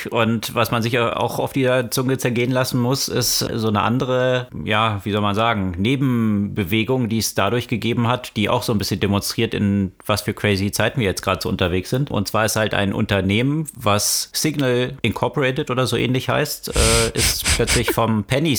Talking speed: 195 wpm